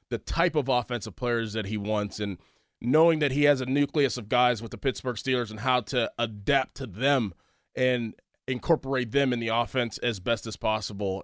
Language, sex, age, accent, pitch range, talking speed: English, male, 20-39, American, 110-140 Hz, 200 wpm